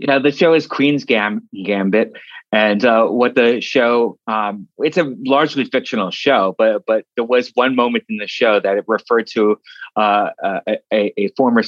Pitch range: 100-125 Hz